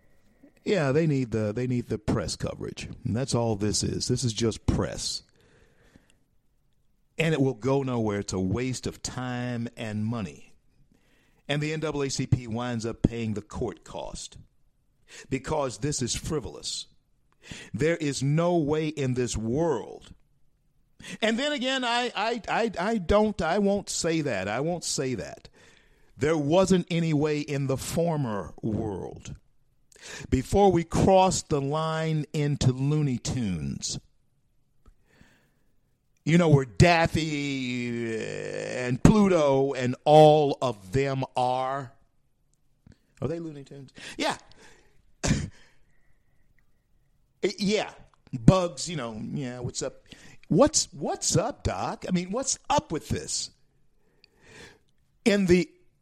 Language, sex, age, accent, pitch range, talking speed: English, male, 50-69, American, 125-165 Hz, 125 wpm